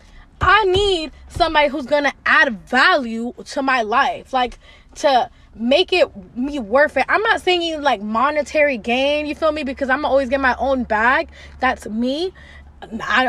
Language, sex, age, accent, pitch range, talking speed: English, female, 20-39, American, 250-320 Hz, 170 wpm